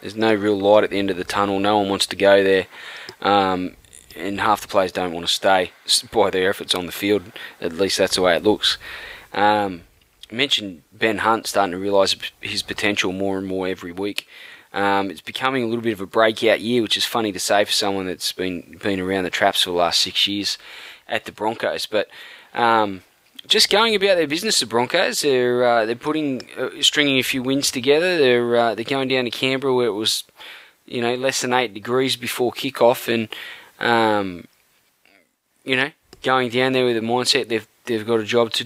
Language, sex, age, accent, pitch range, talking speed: English, male, 20-39, Australian, 100-120 Hz, 210 wpm